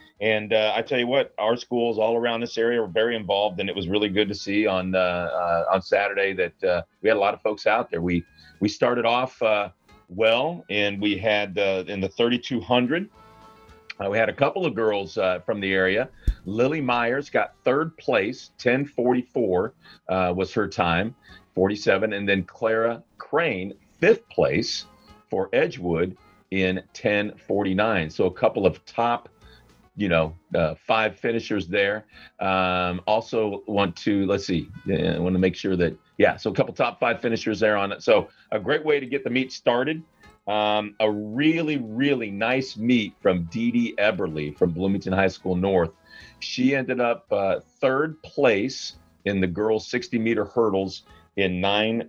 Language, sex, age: English, male, 40-59